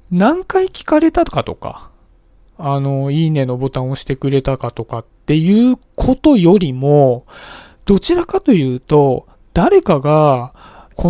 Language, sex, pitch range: Japanese, male, 135-200 Hz